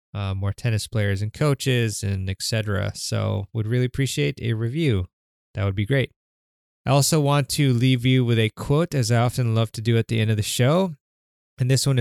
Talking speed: 210 wpm